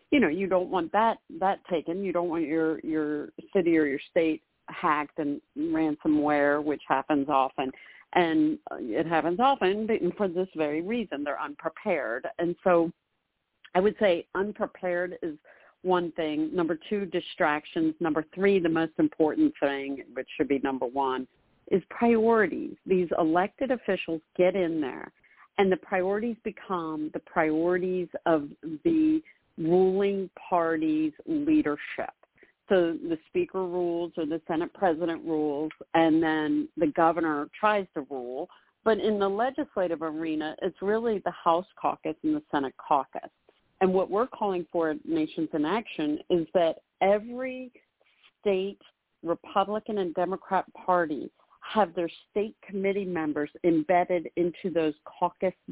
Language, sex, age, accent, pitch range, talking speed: English, female, 50-69, American, 160-210 Hz, 140 wpm